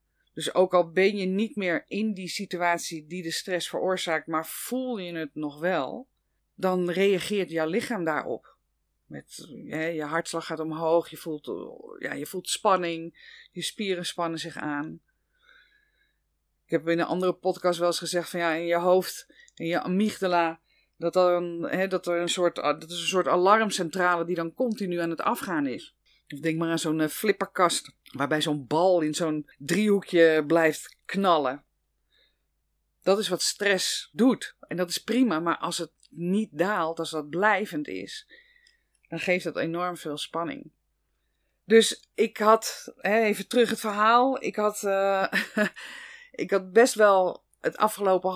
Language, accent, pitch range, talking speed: Dutch, Dutch, 165-210 Hz, 160 wpm